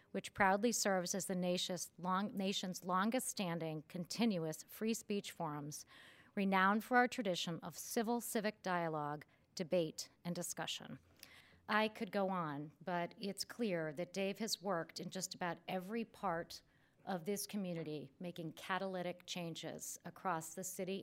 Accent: American